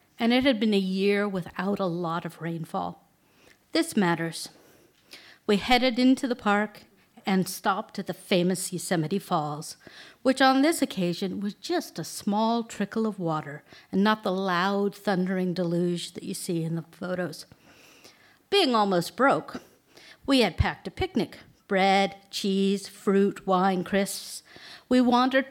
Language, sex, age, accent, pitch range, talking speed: English, female, 60-79, American, 175-235 Hz, 150 wpm